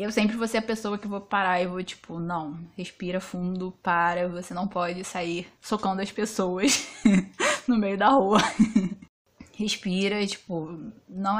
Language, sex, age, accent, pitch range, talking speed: Portuguese, female, 10-29, Brazilian, 185-225 Hz, 160 wpm